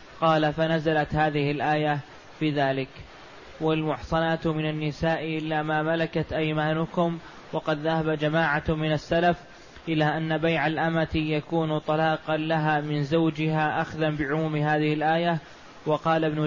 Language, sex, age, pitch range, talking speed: Arabic, male, 20-39, 155-160 Hz, 120 wpm